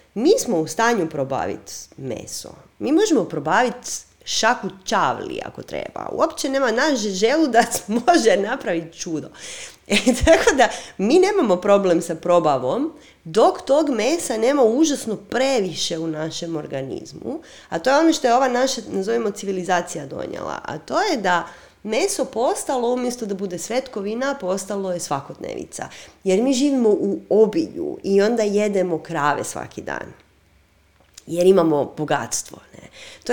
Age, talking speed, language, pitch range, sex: 30-49, 140 wpm, Croatian, 170-255 Hz, female